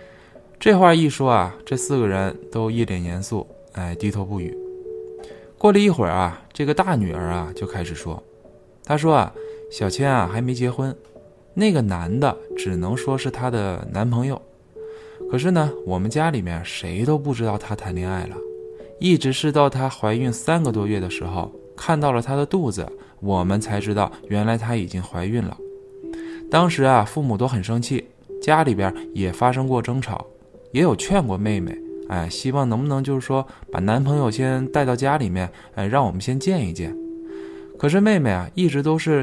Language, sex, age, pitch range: Chinese, male, 20-39, 95-150 Hz